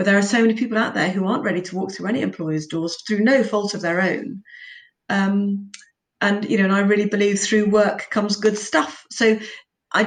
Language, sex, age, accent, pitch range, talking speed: English, female, 30-49, British, 175-205 Hz, 225 wpm